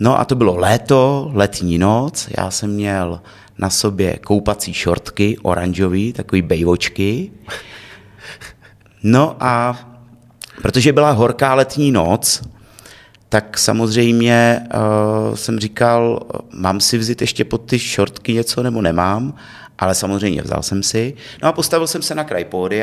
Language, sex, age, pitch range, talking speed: Czech, male, 30-49, 100-125 Hz, 135 wpm